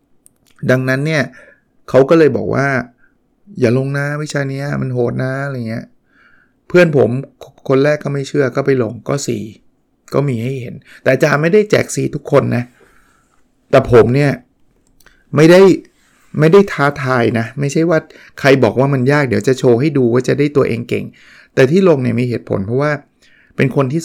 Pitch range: 115-140 Hz